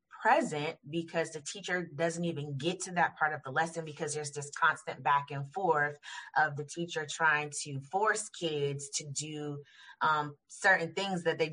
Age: 30-49